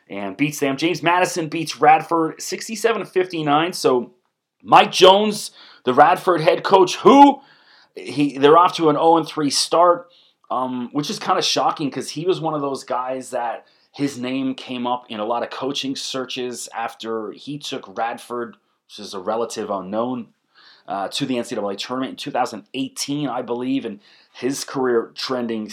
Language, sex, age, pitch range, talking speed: English, male, 30-49, 115-150 Hz, 160 wpm